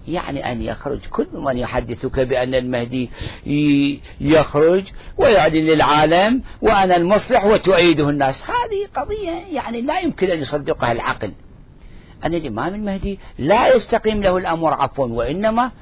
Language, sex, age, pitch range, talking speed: Arabic, male, 50-69, 135-210 Hz, 120 wpm